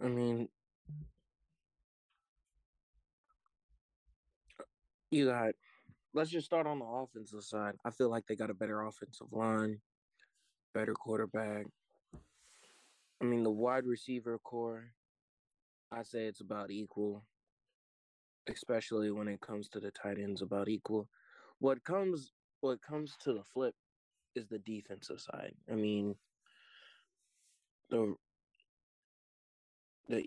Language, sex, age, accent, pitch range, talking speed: English, male, 20-39, American, 105-120 Hz, 115 wpm